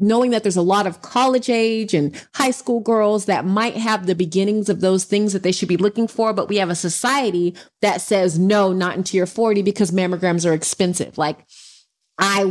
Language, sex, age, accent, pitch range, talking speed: English, female, 30-49, American, 175-220 Hz, 210 wpm